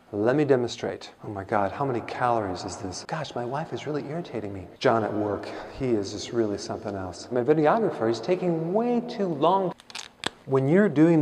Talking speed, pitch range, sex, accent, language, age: 200 wpm, 115-145 Hz, male, American, English, 50-69